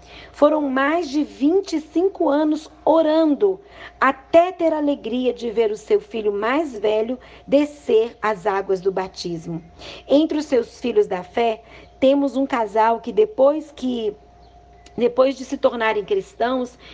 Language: Portuguese